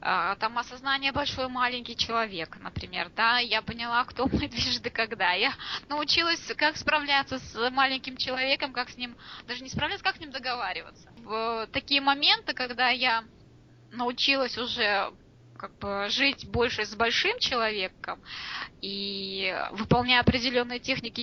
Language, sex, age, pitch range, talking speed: Russian, female, 20-39, 215-270 Hz, 135 wpm